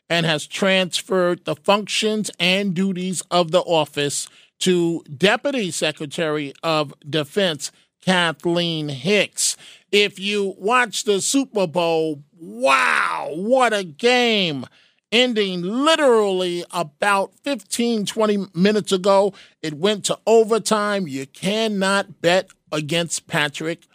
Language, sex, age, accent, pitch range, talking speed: English, male, 50-69, American, 165-205 Hz, 110 wpm